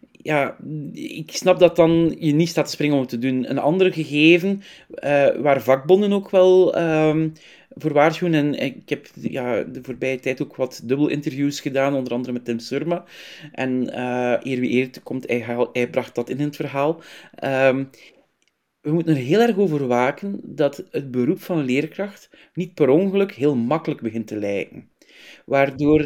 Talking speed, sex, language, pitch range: 180 wpm, male, Dutch, 130-165 Hz